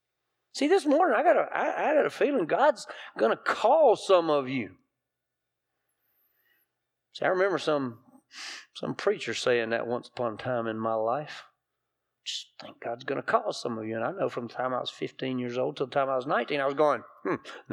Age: 40-59